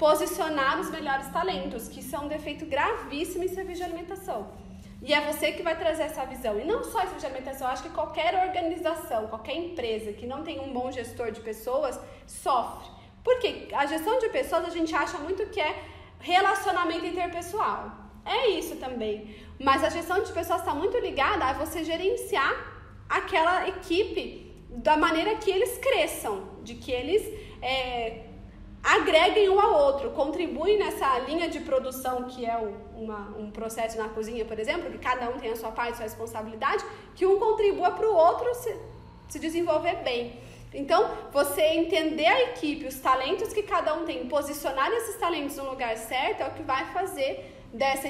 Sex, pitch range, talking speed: female, 260-360 Hz, 175 wpm